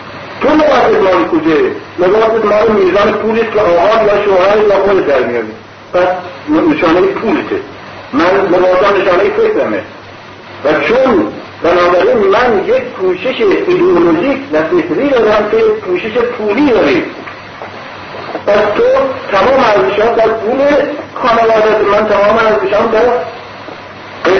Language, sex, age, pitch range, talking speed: Persian, male, 50-69, 195-315 Hz, 120 wpm